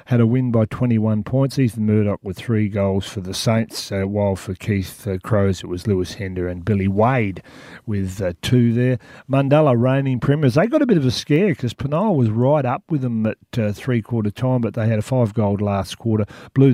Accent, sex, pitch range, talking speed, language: Australian, male, 100-125 Hz, 220 wpm, English